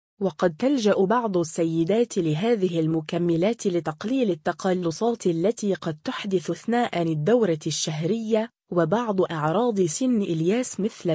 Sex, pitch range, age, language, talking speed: female, 165-225 Hz, 20-39, Arabic, 100 wpm